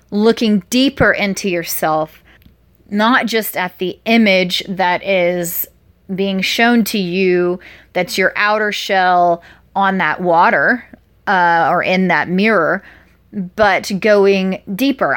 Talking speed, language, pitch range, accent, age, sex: 120 wpm, English, 180-210 Hz, American, 30-49, female